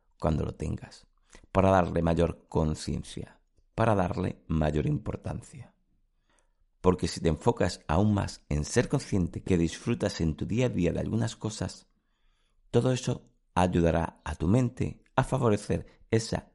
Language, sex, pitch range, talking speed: Spanish, male, 85-110 Hz, 140 wpm